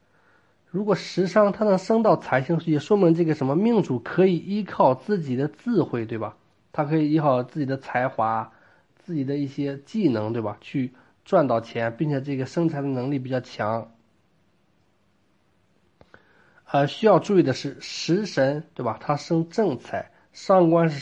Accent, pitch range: native, 120-170 Hz